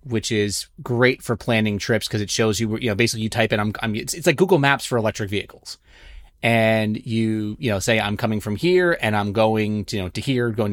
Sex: male